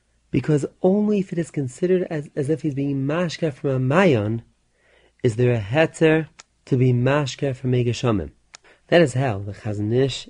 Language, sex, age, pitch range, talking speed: English, male, 30-49, 115-150 Hz, 175 wpm